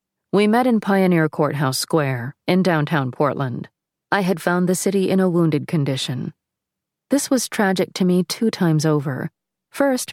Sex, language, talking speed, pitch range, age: female, English, 160 wpm, 150-195 Hz, 40-59